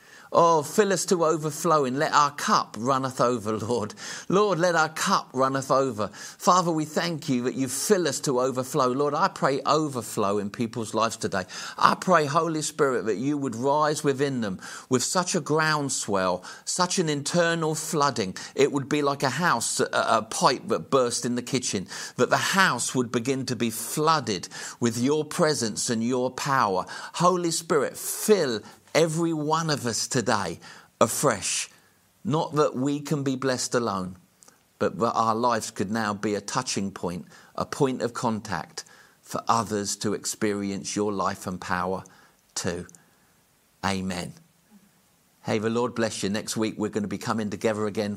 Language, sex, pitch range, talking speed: English, male, 105-150 Hz, 170 wpm